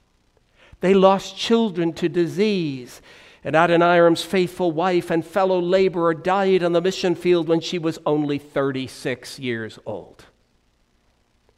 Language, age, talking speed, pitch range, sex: English, 60-79, 125 wpm, 145-225 Hz, male